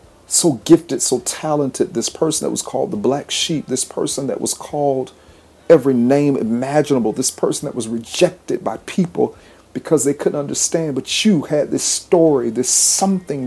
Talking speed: 170 wpm